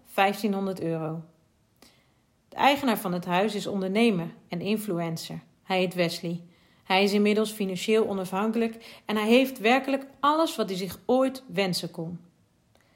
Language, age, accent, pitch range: Dutch, 40-59, Dutch, 185-225 Hz